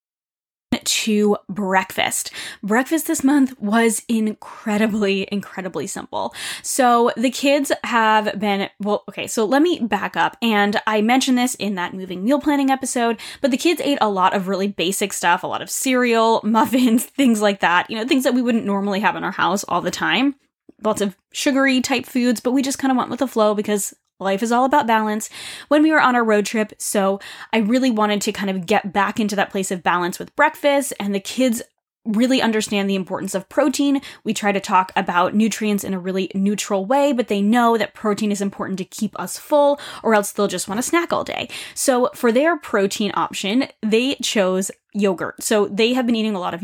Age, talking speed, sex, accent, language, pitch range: 10-29, 210 wpm, female, American, English, 200-260 Hz